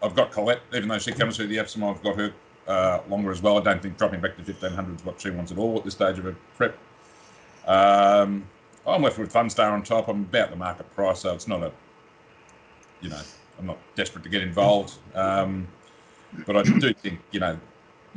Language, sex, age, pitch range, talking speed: English, male, 40-59, 90-110 Hz, 220 wpm